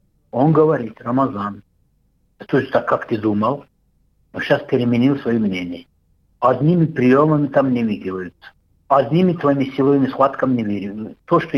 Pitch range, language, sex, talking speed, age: 110-145 Hz, Russian, male, 135 wpm, 60-79